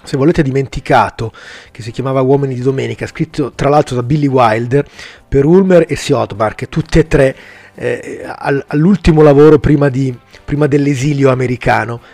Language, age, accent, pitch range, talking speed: Italian, 30-49, native, 120-150 Hz, 150 wpm